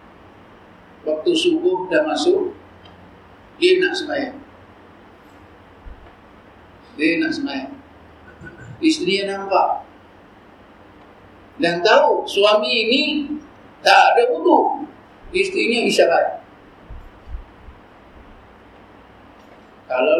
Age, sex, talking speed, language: 50-69, male, 65 wpm, Malay